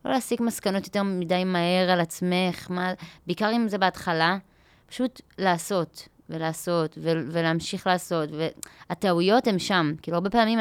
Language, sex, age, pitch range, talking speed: Hebrew, female, 20-39, 165-205 Hz, 135 wpm